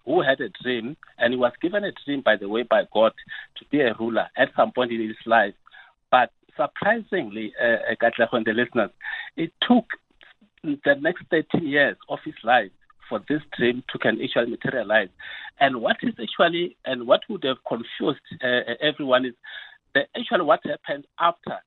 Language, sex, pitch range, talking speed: English, male, 120-195 Hz, 185 wpm